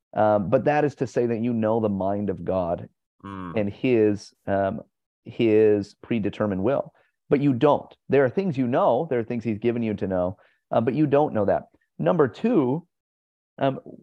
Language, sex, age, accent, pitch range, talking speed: English, male, 30-49, American, 105-130 Hz, 190 wpm